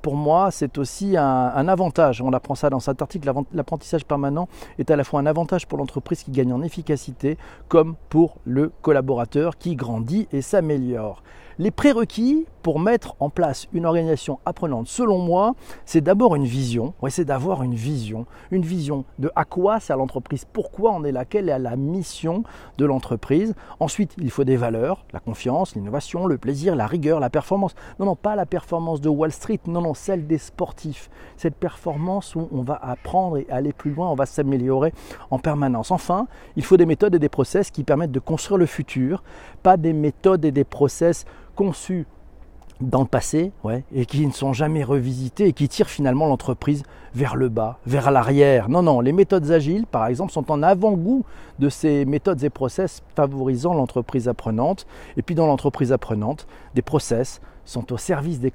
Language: French